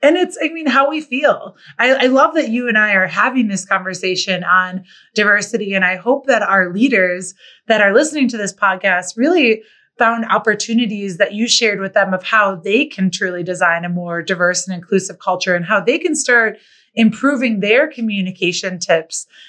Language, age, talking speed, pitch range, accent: English, 20-39, 190 wpm, 190-240 Hz, American